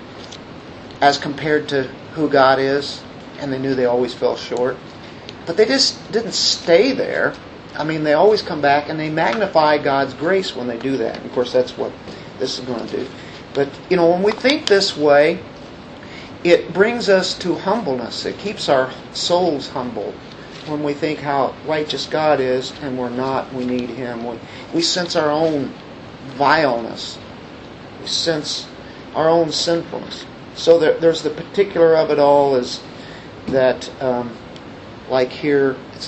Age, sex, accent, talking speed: 50-69, male, American, 160 wpm